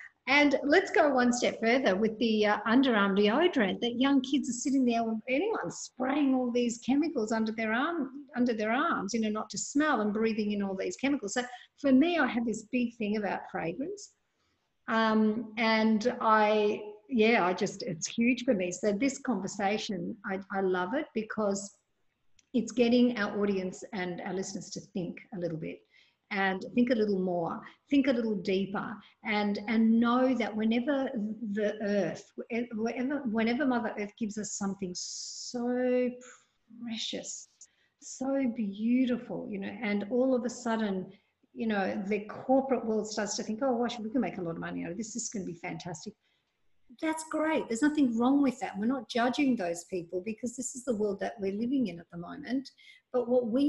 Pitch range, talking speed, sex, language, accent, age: 205-255 Hz, 180 wpm, female, English, Australian, 50-69